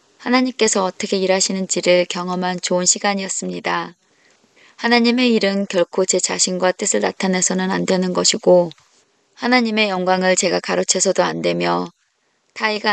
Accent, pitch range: native, 175-200 Hz